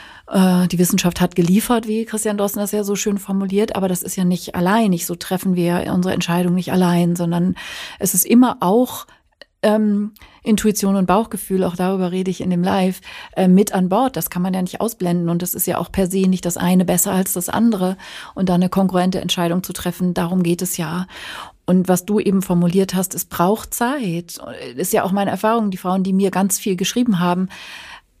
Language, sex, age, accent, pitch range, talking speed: German, female, 40-59, German, 175-195 Hz, 215 wpm